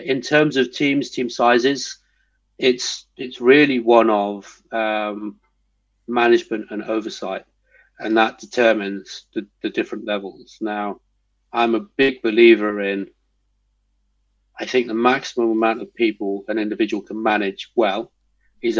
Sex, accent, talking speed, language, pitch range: male, British, 130 wpm, English, 105-120 Hz